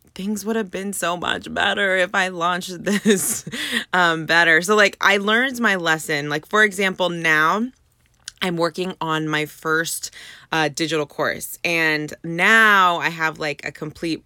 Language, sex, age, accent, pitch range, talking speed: English, female, 20-39, American, 155-190 Hz, 160 wpm